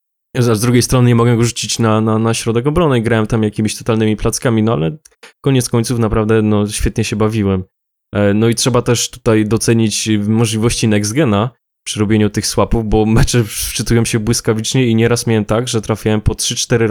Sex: male